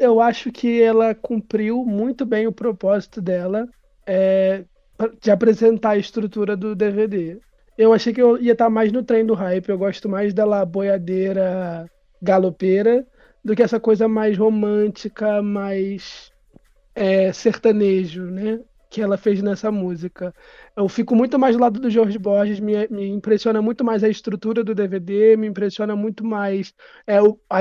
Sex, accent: male, Brazilian